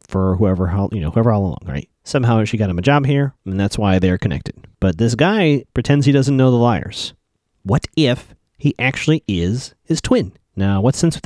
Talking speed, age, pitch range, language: 220 wpm, 30-49, 100-140 Hz, English